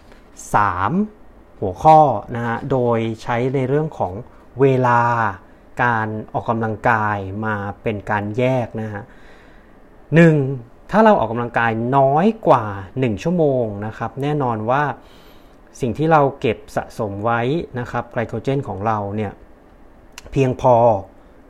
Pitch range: 110-140 Hz